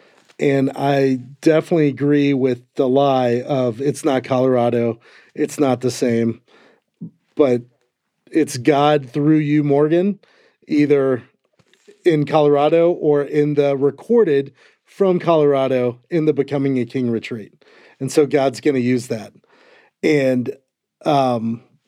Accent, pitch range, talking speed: American, 130-160 Hz, 125 wpm